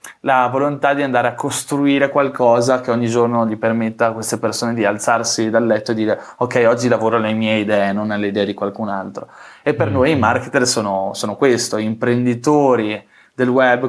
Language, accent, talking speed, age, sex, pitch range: Italian, native, 190 wpm, 20-39, male, 110-130 Hz